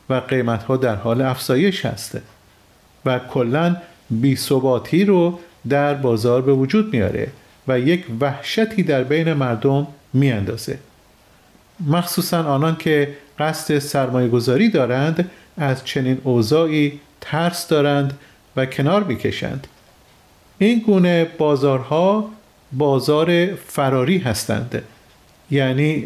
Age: 40-59